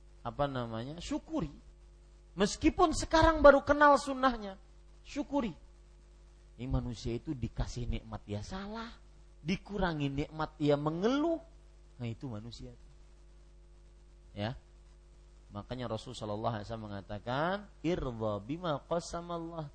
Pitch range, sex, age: 120-195 Hz, male, 30-49